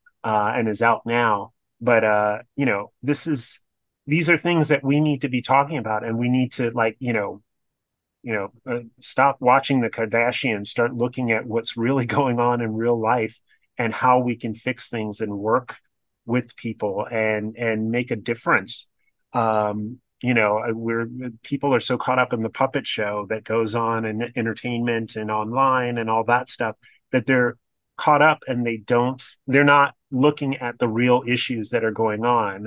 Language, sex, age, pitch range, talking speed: English, male, 30-49, 110-125 Hz, 185 wpm